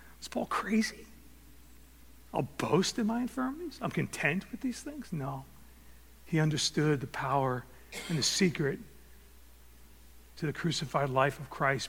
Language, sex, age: English, male, 40-59